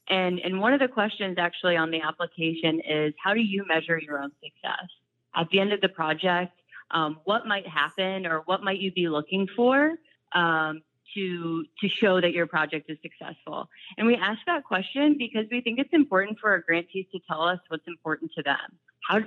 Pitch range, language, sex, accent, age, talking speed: 160-195 Hz, English, female, American, 30-49, 200 wpm